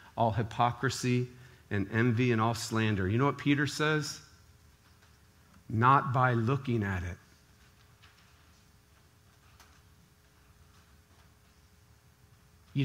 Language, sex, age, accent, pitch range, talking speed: English, male, 40-59, American, 95-150 Hz, 85 wpm